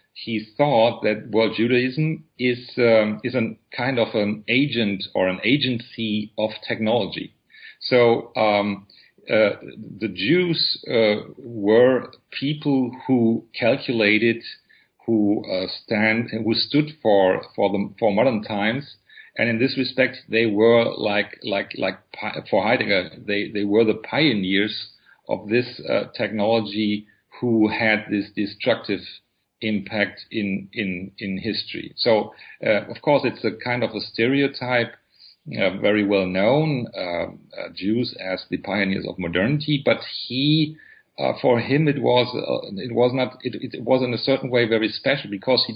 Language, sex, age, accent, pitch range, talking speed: English, male, 40-59, German, 105-125 Hz, 150 wpm